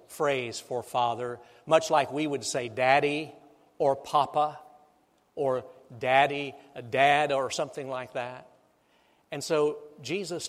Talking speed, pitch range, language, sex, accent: 120 wpm, 125-150 Hz, English, male, American